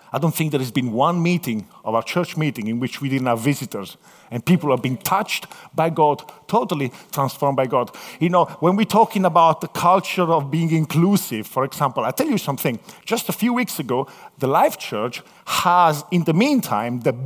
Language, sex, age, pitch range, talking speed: English, male, 50-69, 155-205 Hz, 205 wpm